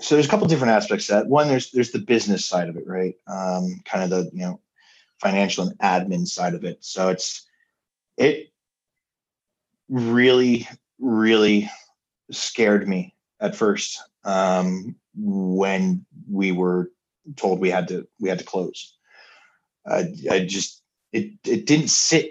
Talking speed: 155 wpm